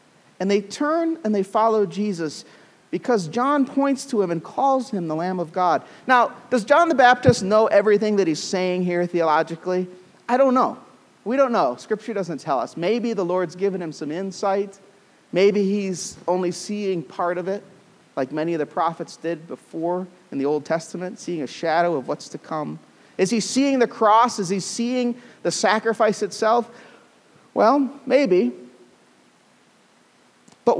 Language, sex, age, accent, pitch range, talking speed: English, male, 40-59, American, 180-245 Hz, 170 wpm